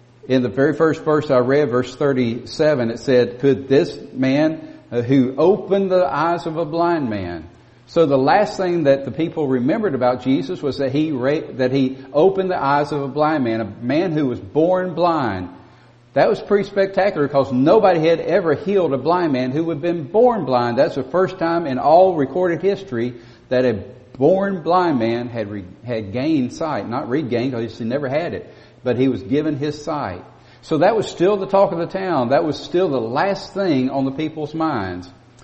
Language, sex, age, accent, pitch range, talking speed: English, male, 50-69, American, 120-160 Hz, 200 wpm